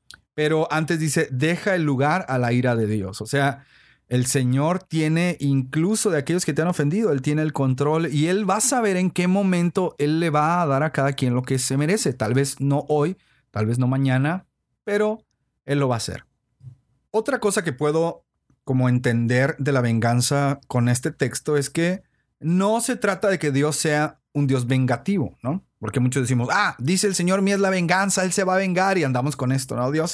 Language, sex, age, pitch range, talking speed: Spanish, male, 40-59, 130-175 Hz, 215 wpm